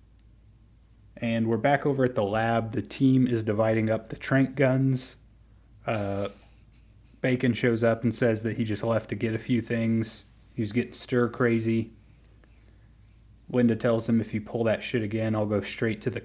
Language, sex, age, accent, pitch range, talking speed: English, male, 30-49, American, 105-120 Hz, 175 wpm